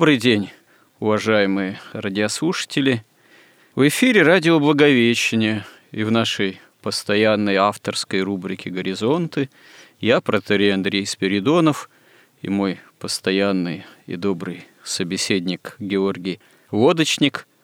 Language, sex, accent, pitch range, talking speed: Russian, male, native, 100-125 Hz, 90 wpm